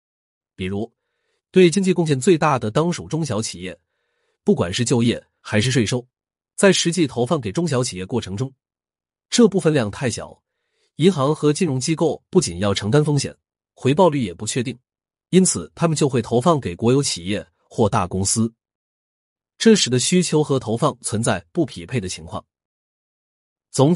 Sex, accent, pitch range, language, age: male, native, 100-155 Hz, Chinese, 30-49